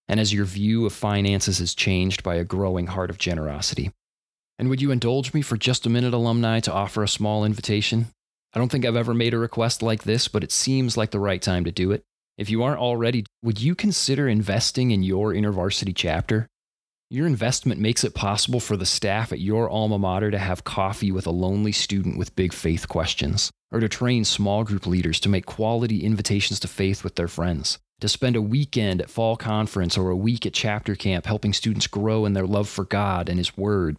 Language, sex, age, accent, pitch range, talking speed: English, male, 30-49, American, 95-115 Hz, 220 wpm